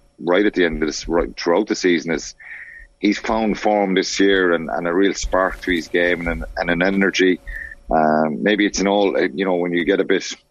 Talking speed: 230 wpm